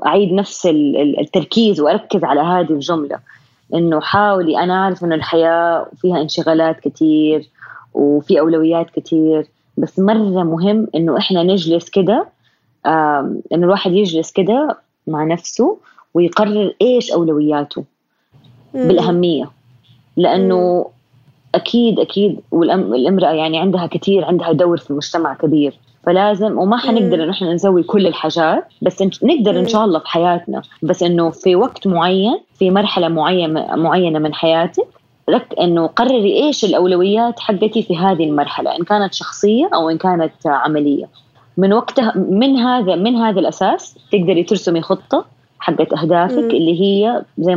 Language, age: Arabic, 20-39